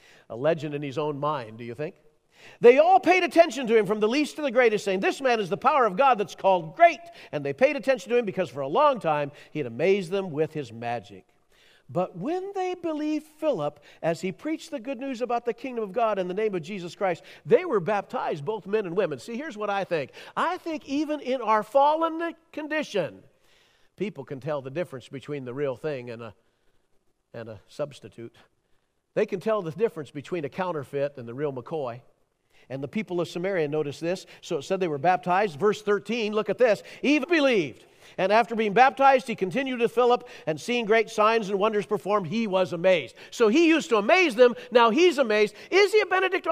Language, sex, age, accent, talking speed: English, male, 50-69, American, 215 wpm